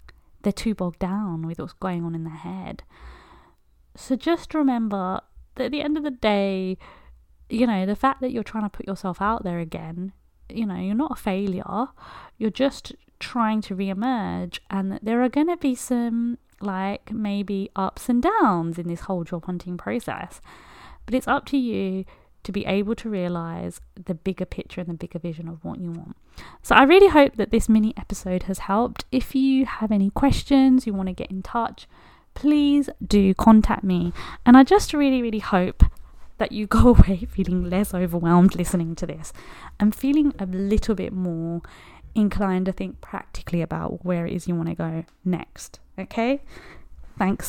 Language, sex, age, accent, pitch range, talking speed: English, female, 30-49, British, 180-240 Hz, 185 wpm